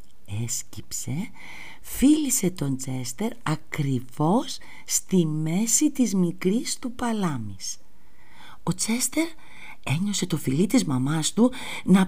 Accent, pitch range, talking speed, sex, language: native, 155-260 Hz, 100 wpm, female, Greek